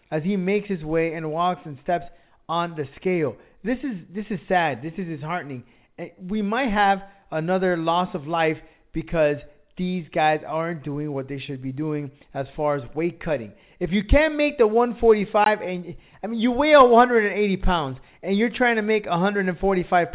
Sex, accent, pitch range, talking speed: male, American, 155-200 Hz, 180 wpm